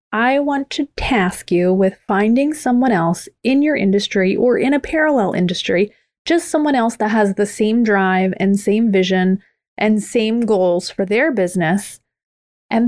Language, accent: English, American